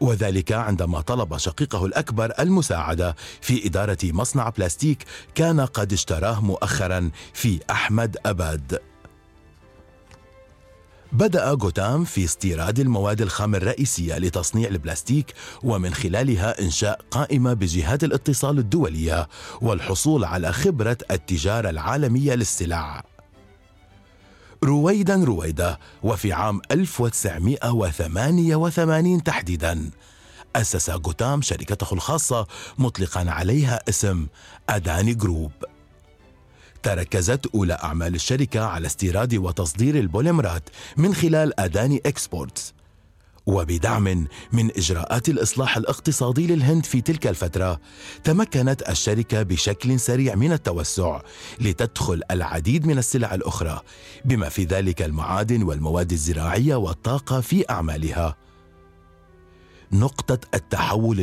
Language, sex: Arabic, male